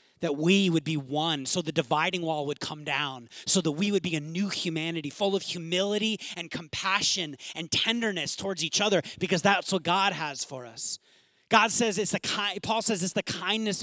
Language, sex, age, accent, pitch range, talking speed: English, male, 30-49, American, 140-195 Hz, 205 wpm